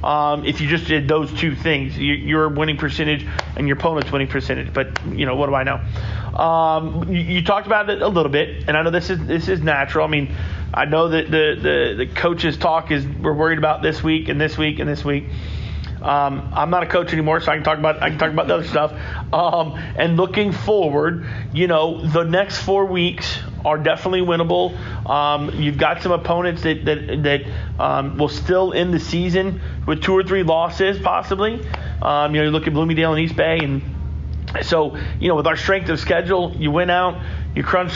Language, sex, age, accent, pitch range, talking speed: English, male, 30-49, American, 150-180 Hz, 220 wpm